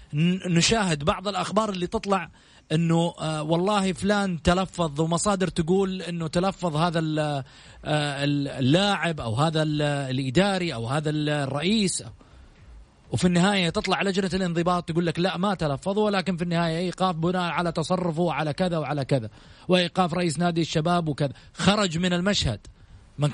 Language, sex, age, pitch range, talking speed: Arabic, male, 30-49, 135-185 Hz, 130 wpm